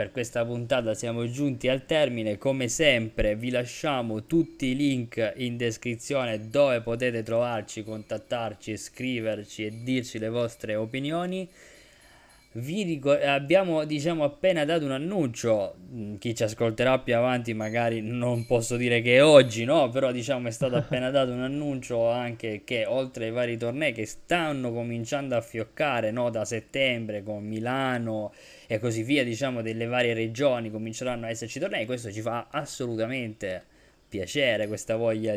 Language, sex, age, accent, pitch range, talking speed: Italian, male, 20-39, native, 110-135 Hz, 150 wpm